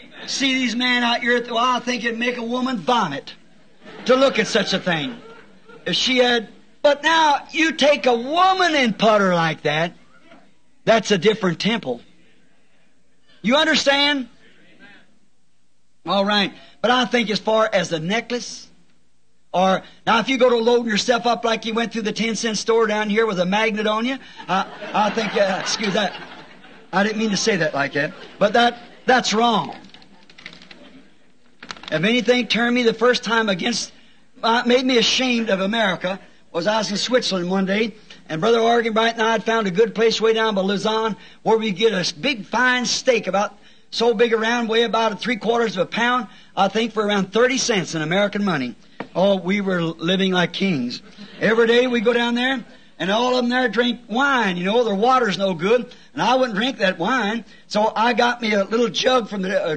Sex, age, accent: male, 50-69, American